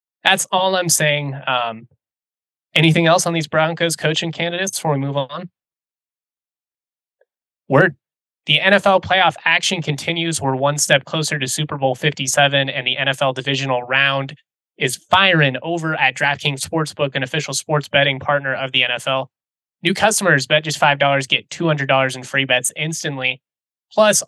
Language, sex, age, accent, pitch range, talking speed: English, male, 20-39, American, 135-165 Hz, 150 wpm